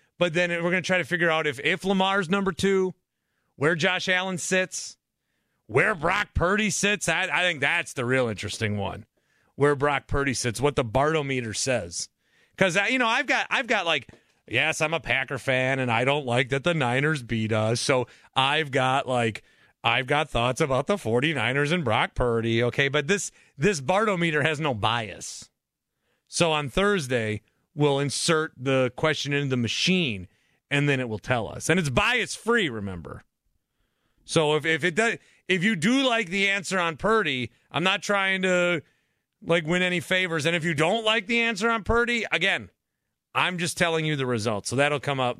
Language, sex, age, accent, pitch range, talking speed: English, male, 30-49, American, 125-185 Hz, 185 wpm